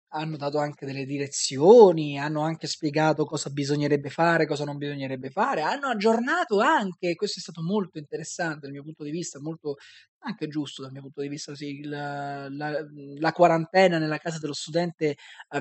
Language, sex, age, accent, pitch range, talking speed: Italian, male, 20-39, native, 145-195 Hz, 175 wpm